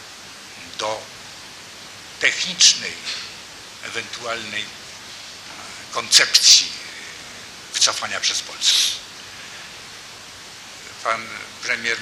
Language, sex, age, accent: Polish, male, 60-79, native